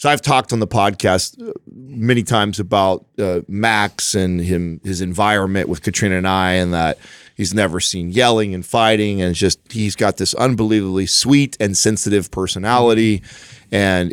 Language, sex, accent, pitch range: English, male, American, 90-105 Hz